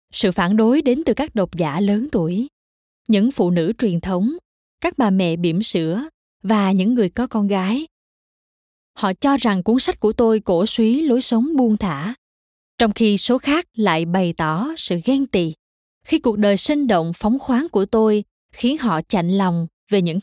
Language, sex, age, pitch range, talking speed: Vietnamese, female, 20-39, 185-245 Hz, 190 wpm